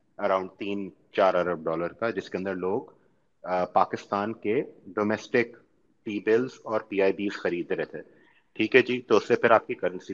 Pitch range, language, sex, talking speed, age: 100-130 Hz, Urdu, male, 185 wpm, 30-49